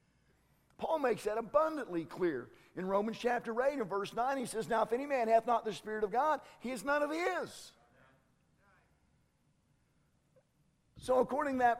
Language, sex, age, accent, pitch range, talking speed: English, male, 50-69, American, 195-270 Hz, 170 wpm